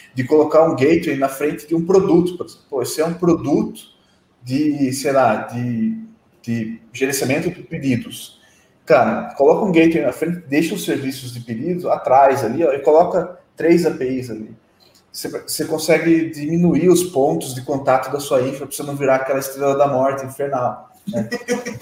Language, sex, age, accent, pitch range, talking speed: Portuguese, male, 20-39, Brazilian, 130-170 Hz, 170 wpm